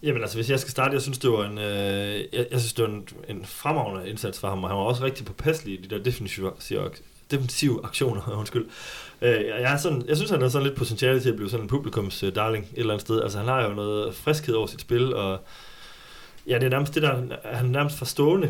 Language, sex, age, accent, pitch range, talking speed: Danish, male, 30-49, native, 100-125 Hz, 240 wpm